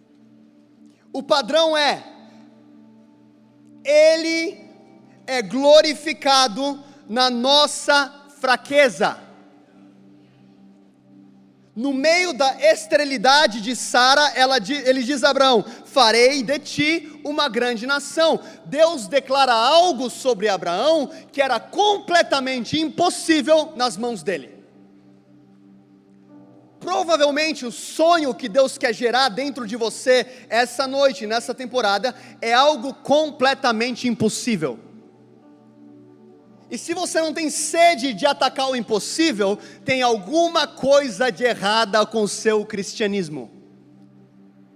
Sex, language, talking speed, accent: male, Portuguese, 100 wpm, Brazilian